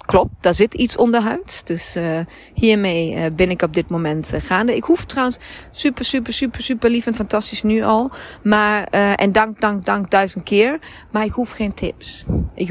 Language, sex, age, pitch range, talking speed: Dutch, female, 30-49, 170-215 Hz, 205 wpm